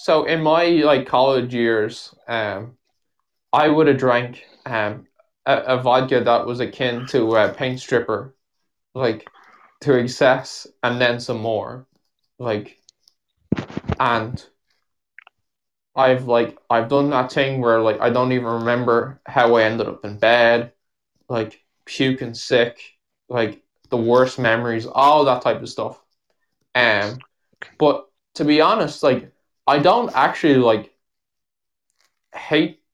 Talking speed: 135 wpm